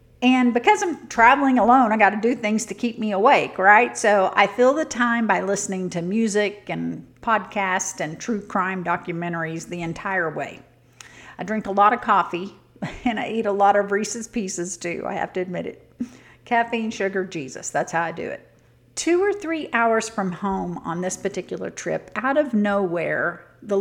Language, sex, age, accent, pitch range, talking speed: English, female, 50-69, American, 185-235 Hz, 190 wpm